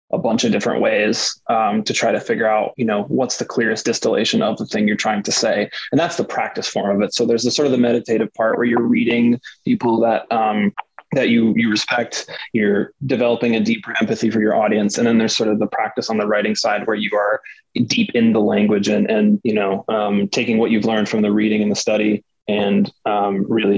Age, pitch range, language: 20-39, 110-125 Hz, English